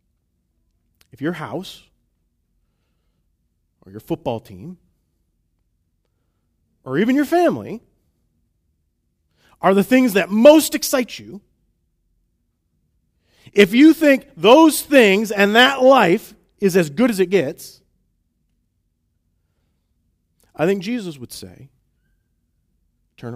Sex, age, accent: male, 40-59, American